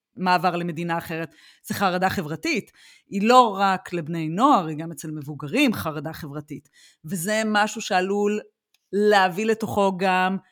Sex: female